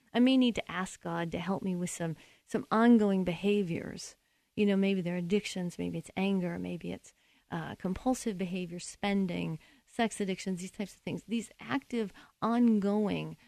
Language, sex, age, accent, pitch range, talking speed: English, female, 40-59, American, 180-235 Hz, 165 wpm